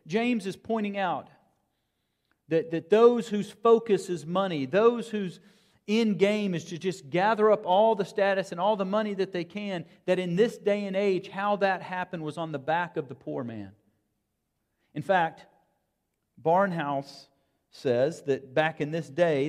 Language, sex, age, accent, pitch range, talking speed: English, male, 40-59, American, 135-190 Hz, 170 wpm